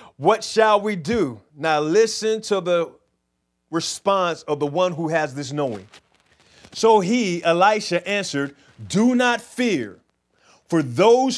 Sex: male